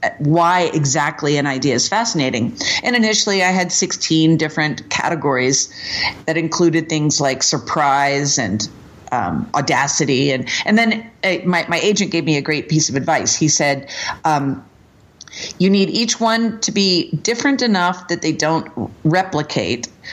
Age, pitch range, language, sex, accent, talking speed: 50-69, 145-175 Hz, English, female, American, 150 wpm